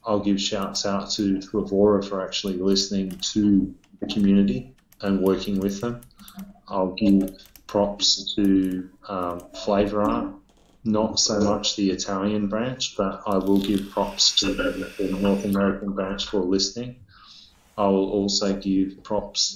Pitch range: 95-105 Hz